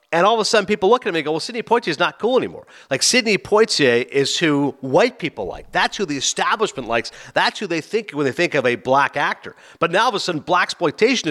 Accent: American